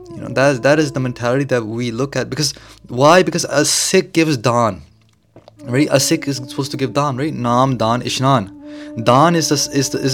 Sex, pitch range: male, 115-150 Hz